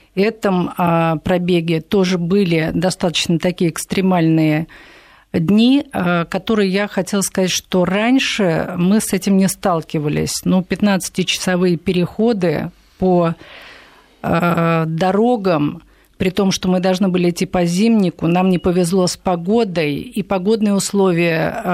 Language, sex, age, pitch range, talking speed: Russian, female, 50-69, 175-215 Hz, 120 wpm